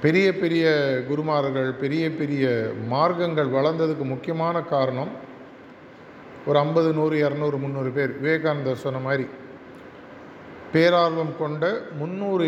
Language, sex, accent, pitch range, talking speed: Tamil, male, native, 135-165 Hz, 100 wpm